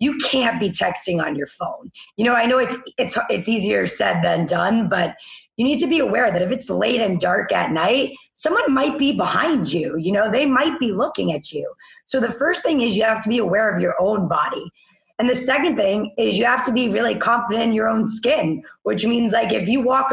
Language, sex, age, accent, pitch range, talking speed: English, female, 20-39, American, 200-260 Hz, 240 wpm